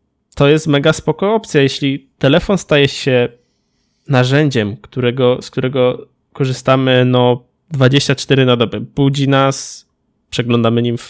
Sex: male